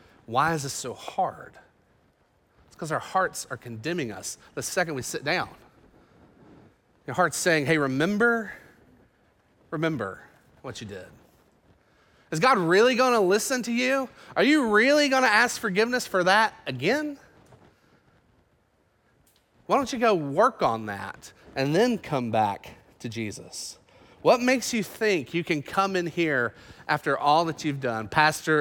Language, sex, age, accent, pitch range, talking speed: English, male, 30-49, American, 135-205 Hz, 145 wpm